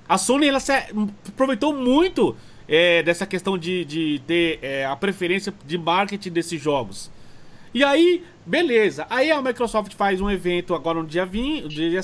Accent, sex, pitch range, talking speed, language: Brazilian, male, 180-255 Hz, 160 wpm, Portuguese